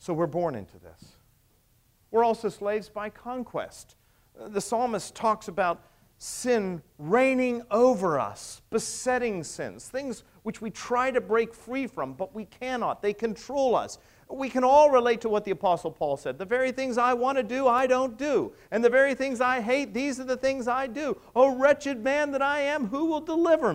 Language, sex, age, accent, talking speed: English, male, 50-69, American, 190 wpm